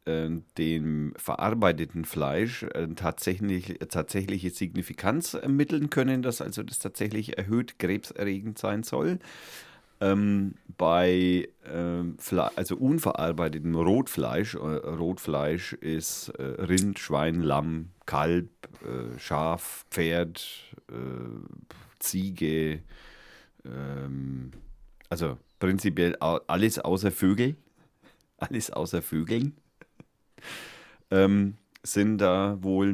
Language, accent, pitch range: German, German, 80-105 Hz